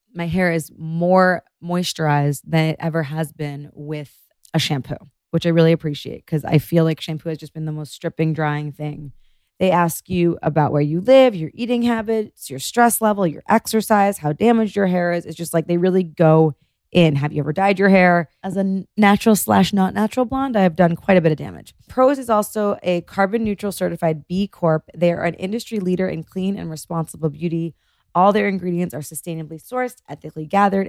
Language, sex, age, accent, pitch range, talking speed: English, female, 20-39, American, 155-195 Hz, 205 wpm